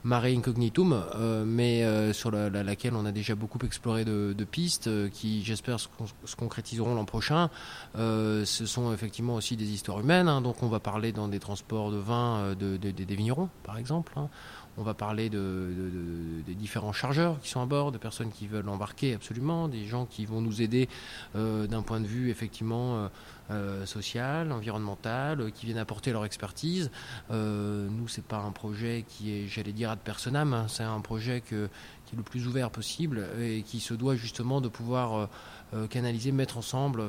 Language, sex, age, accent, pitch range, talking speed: English, male, 20-39, French, 105-125 Hz, 190 wpm